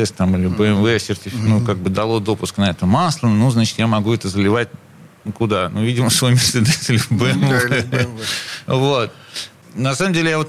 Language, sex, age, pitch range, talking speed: Russian, male, 40-59, 110-145 Hz, 175 wpm